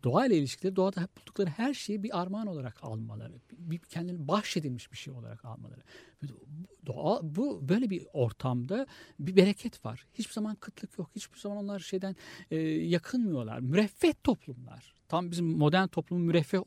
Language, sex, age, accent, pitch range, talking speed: Turkish, male, 60-79, native, 140-200 Hz, 150 wpm